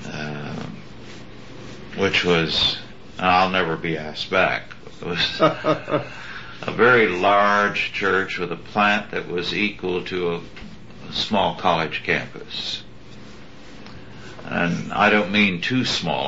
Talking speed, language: 120 wpm, English